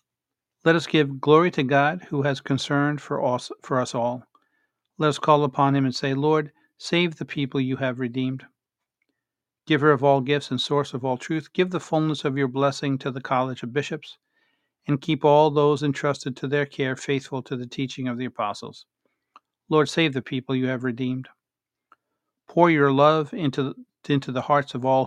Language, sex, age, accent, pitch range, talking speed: English, male, 50-69, American, 130-145 Hz, 190 wpm